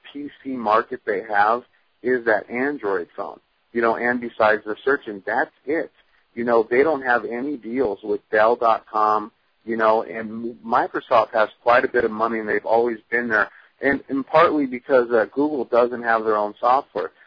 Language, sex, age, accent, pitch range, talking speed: English, male, 40-59, American, 110-130 Hz, 175 wpm